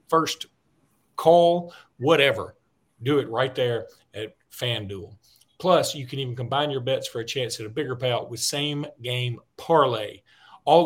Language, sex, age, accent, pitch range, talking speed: English, male, 40-59, American, 125-165 Hz, 155 wpm